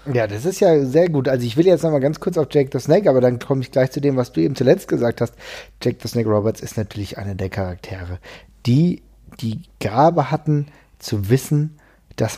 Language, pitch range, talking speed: German, 115-150 Hz, 230 wpm